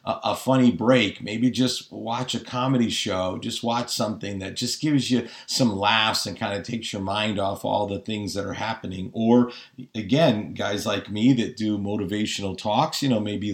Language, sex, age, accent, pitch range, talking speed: English, male, 40-59, American, 105-130 Hz, 190 wpm